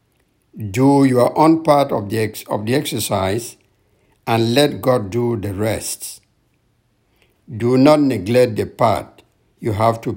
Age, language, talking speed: 60-79, English, 130 wpm